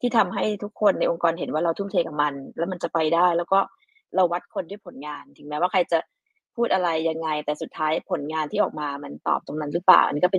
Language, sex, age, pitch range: Thai, female, 20-39, 165-220 Hz